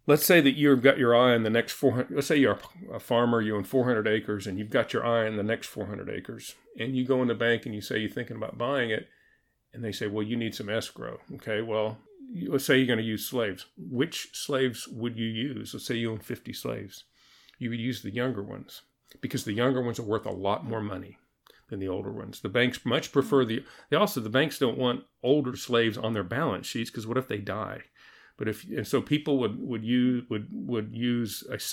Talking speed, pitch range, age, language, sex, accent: 240 wpm, 105-130 Hz, 40-59, English, male, American